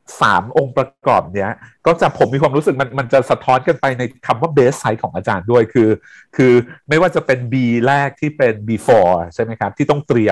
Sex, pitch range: male, 110-140 Hz